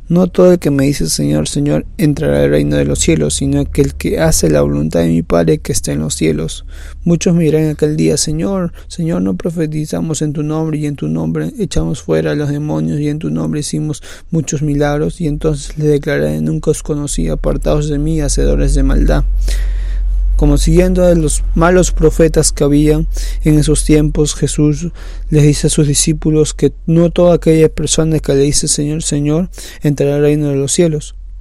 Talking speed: 195 wpm